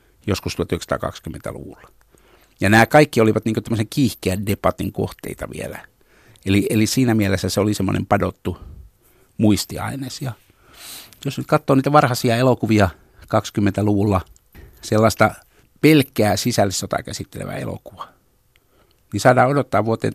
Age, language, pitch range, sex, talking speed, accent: 60-79, Finnish, 95-110 Hz, male, 115 wpm, native